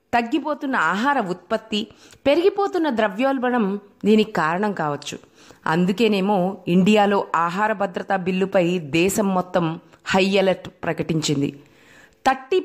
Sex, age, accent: female, 30-49, native